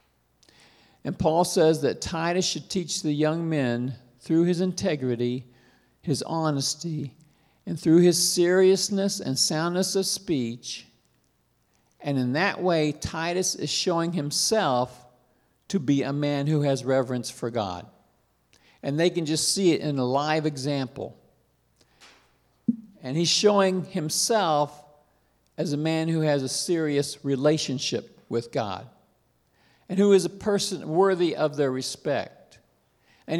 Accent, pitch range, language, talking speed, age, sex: American, 140-180 Hz, English, 135 wpm, 50-69, male